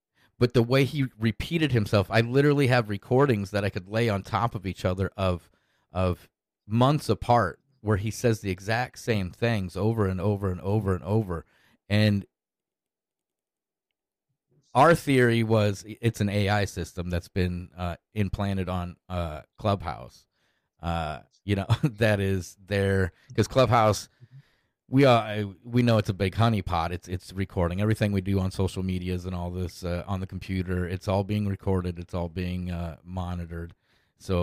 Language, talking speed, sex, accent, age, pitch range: English, 165 wpm, male, American, 30-49, 90-110 Hz